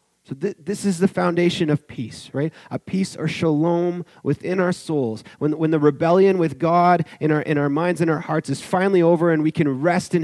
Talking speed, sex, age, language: 225 wpm, male, 30-49, English